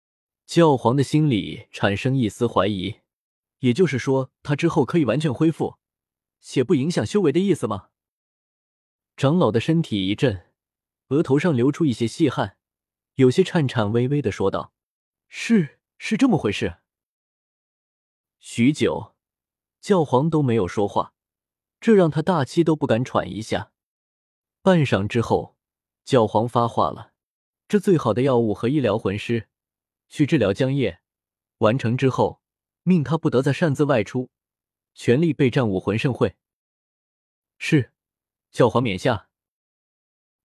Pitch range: 115-160 Hz